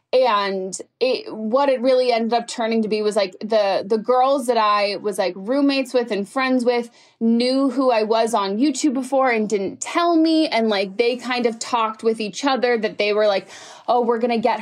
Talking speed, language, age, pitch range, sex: 220 wpm, English, 20-39, 210-265 Hz, female